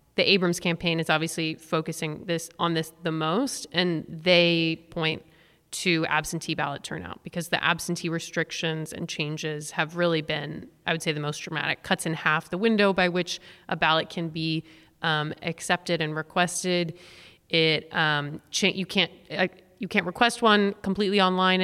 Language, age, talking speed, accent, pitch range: English, 30-49, 165 wpm, American, 160-185 Hz